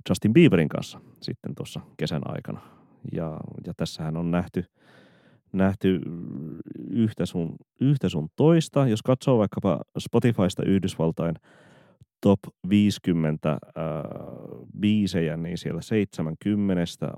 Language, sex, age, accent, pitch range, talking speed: Finnish, male, 30-49, native, 80-100 Hz, 105 wpm